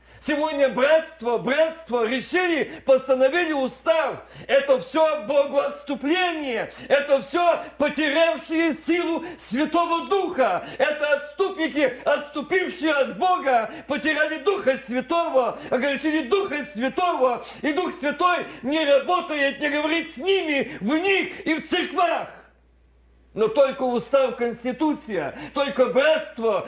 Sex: male